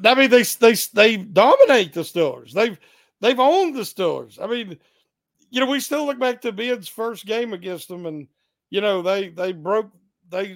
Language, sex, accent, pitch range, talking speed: English, male, American, 180-230 Hz, 195 wpm